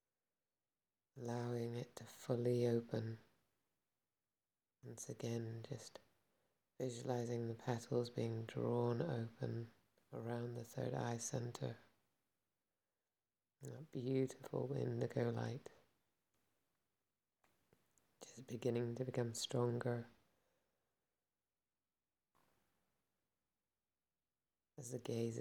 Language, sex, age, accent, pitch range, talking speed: English, female, 30-49, British, 115-125 Hz, 75 wpm